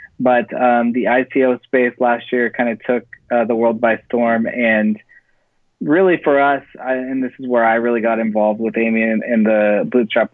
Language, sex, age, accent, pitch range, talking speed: English, male, 20-39, American, 105-120 Hz, 185 wpm